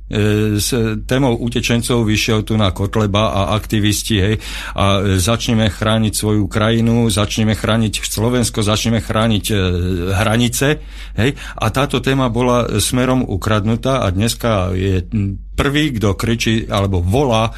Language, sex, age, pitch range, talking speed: Slovak, male, 50-69, 100-120 Hz, 125 wpm